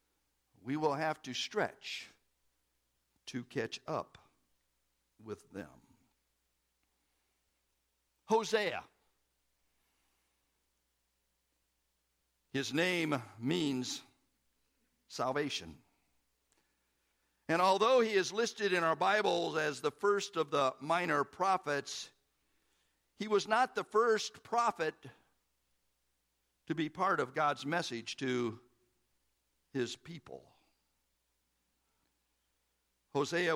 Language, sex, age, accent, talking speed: English, male, 60-79, American, 80 wpm